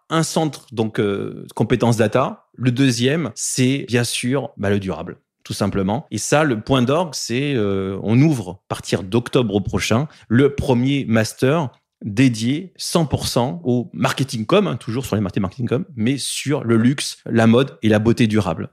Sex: male